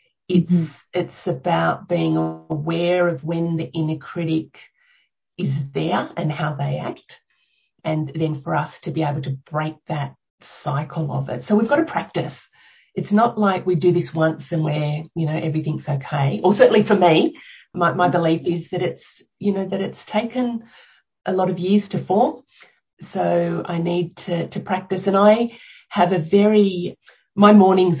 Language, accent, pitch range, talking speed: English, Australian, 150-180 Hz, 175 wpm